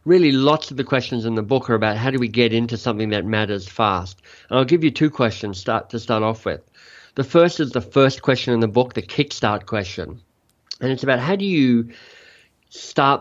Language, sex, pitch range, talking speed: English, male, 115-140 Hz, 220 wpm